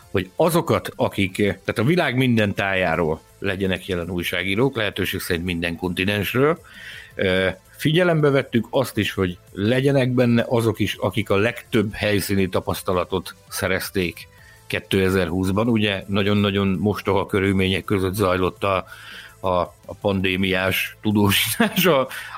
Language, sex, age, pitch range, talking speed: Hungarian, male, 60-79, 95-115 Hz, 115 wpm